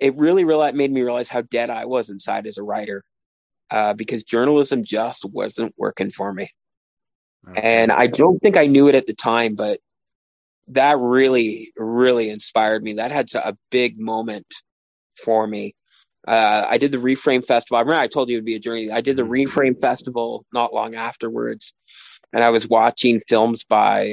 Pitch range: 110-135 Hz